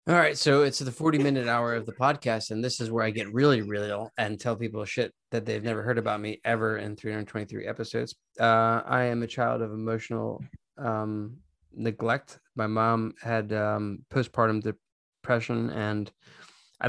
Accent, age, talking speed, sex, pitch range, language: American, 20-39, 180 wpm, male, 110-120 Hz, English